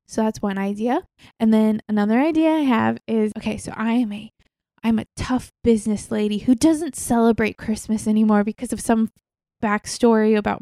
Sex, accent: female, American